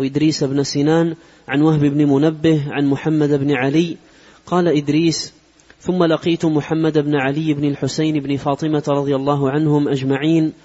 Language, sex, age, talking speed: Arabic, male, 30-49, 145 wpm